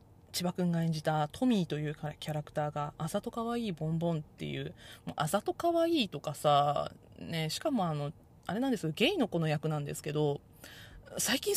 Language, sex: Japanese, female